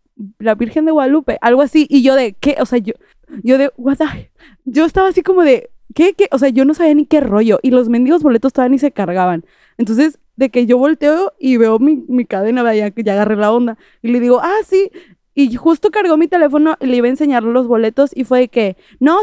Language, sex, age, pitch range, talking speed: English, female, 20-39, 225-310 Hz, 235 wpm